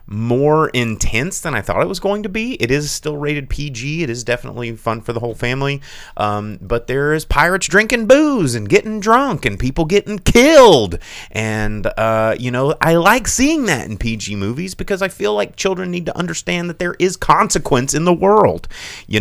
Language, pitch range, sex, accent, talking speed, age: English, 95-140 Hz, male, American, 200 wpm, 30-49